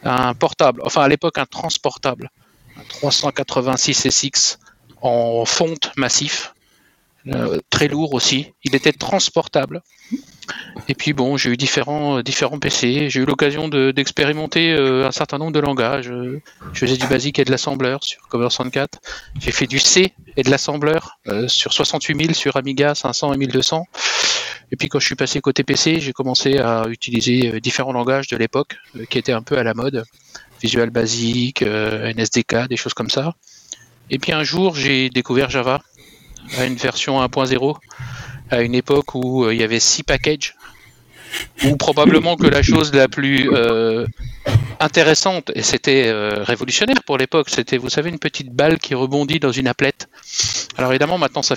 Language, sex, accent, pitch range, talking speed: French, male, French, 125-150 Hz, 170 wpm